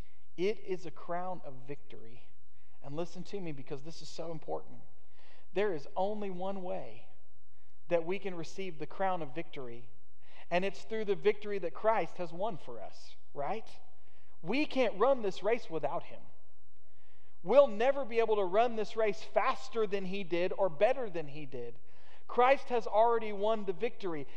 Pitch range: 145-215 Hz